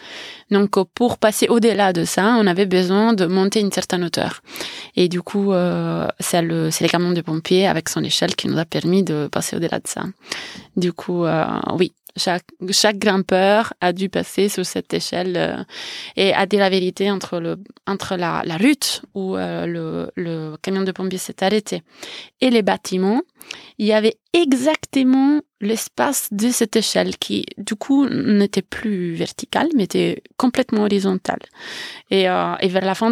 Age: 20-39